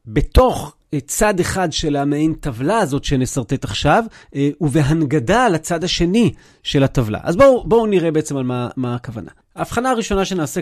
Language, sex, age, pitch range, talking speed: Hebrew, male, 40-59, 135-185 Hz, 145 wpm